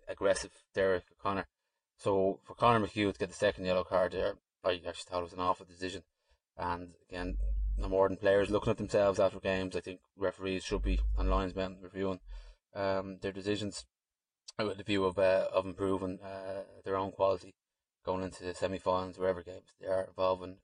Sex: male